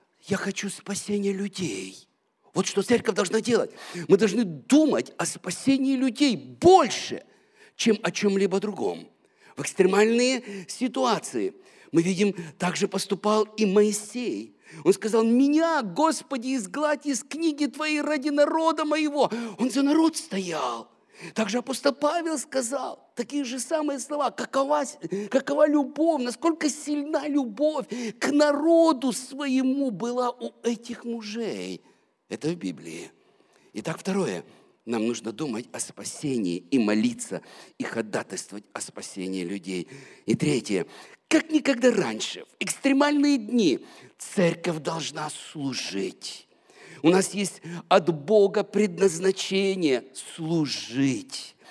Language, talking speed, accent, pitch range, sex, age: Russian, 115 wpm, native, 190-285 Hz, male, 50-69